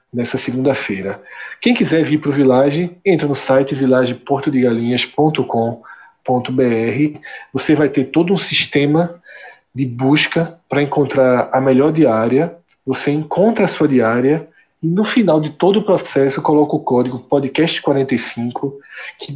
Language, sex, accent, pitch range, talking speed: Portuguese, male, Brazilian, 130-155 Hz, 125 wpm